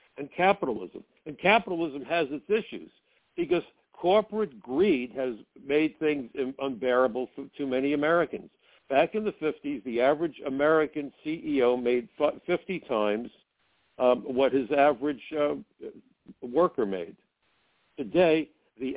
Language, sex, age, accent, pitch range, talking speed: English, male, 60-79, American, 130-165 Hz, 120 wpm